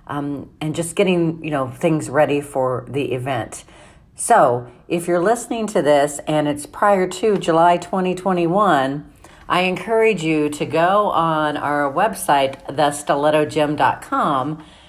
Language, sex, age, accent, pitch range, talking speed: English, female, 40-59, American, 145-175 Hz, 130 wpm